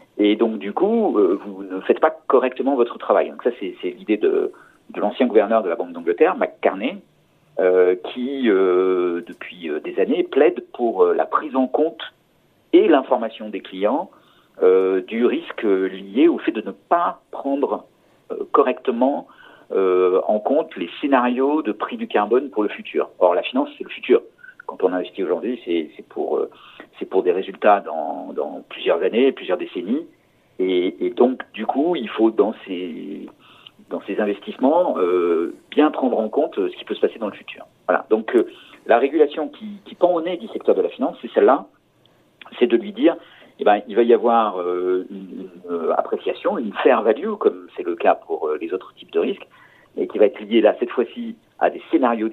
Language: French